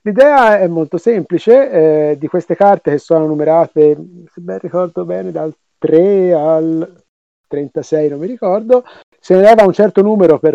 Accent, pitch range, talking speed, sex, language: native, 160-235 Hz, 165 wpm, male, Italian